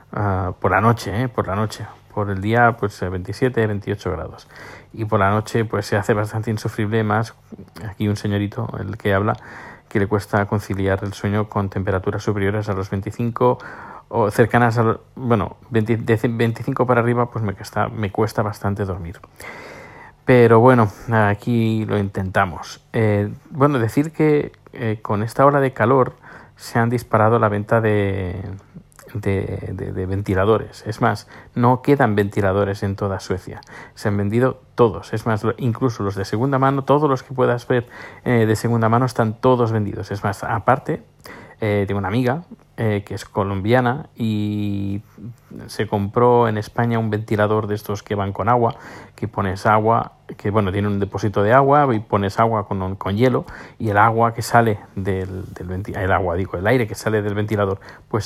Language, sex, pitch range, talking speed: Spanish, male, 100-120 Hz, 175 wpm